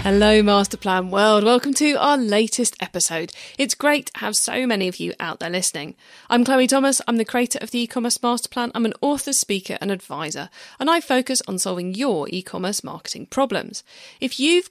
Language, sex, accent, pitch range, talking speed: English, female, British, 190-270 Hz, 195 wpm